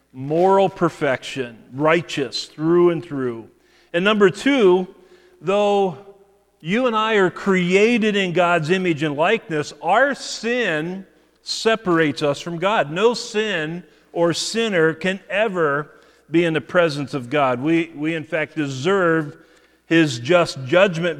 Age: 40-59